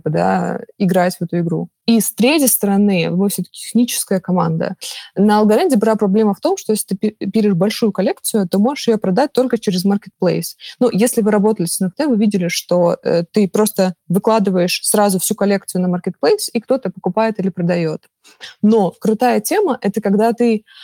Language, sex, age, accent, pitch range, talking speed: Russian, female, 20-39, native, 190-230 Hz, 175 wpm